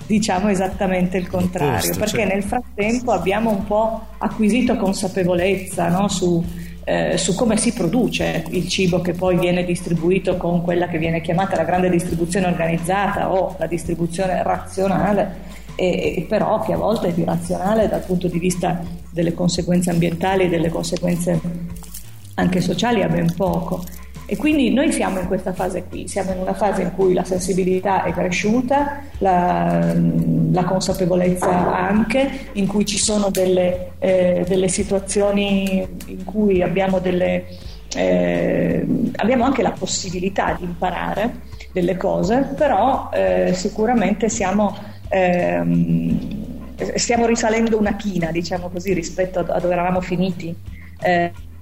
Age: 40-59